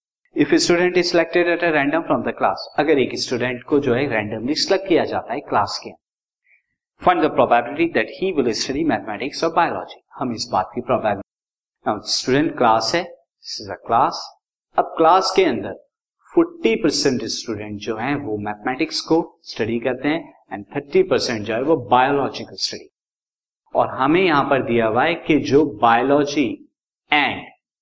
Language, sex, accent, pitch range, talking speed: Hindi, male, native, 120-170 Hz, 115 wpm